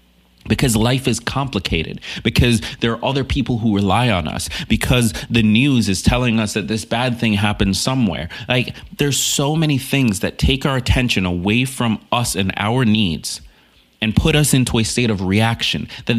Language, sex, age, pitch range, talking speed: English, male, 30-49, 90-120 Hz, 180 wpm